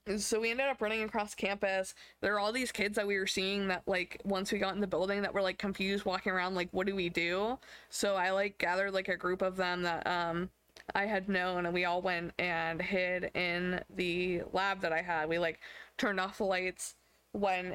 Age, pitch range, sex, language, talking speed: 20-39, 175-200 Hz, female, English, 230 wpm